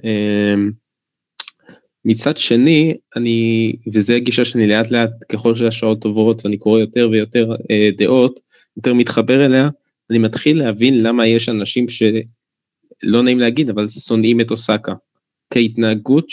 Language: Hebrew